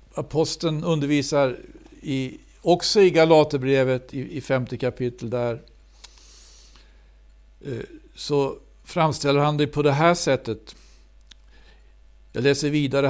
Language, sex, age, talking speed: Swedish, male, 60-79, 90 wpm